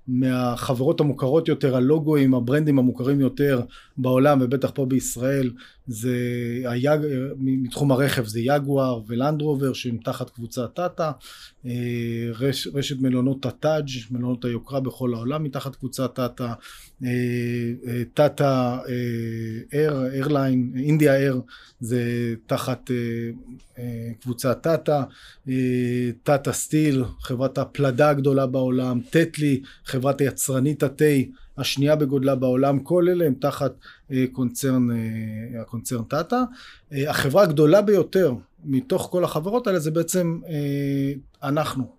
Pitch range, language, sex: 125-150 Hz, Hebrew, male